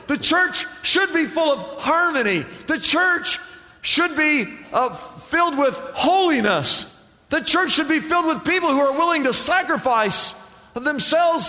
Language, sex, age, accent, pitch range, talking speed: English, male, 50-69, American, 205-315 Hz, 145 wpm